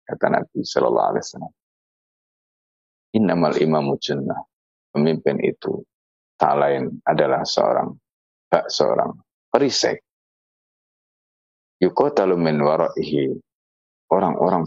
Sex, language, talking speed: male, Indonesian, 65 wpm